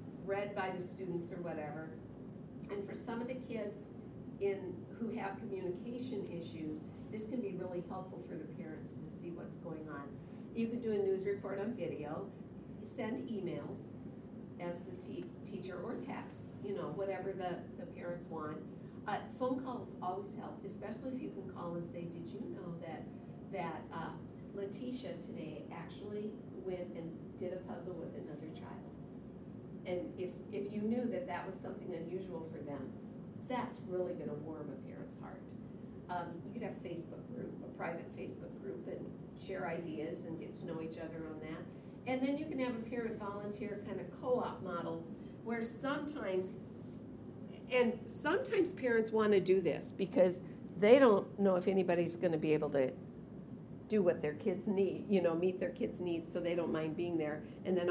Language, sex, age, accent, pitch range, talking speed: English, female, 50-69, American, 175-220 Hz, 180 wpm